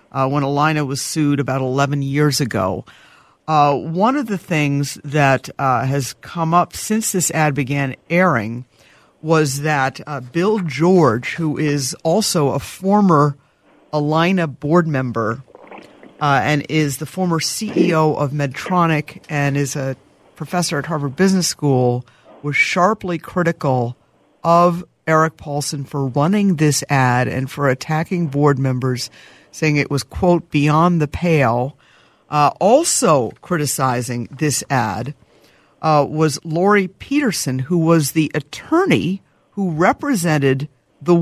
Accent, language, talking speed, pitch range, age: American, English, 130 wpm, 140-175 Hz, 50-69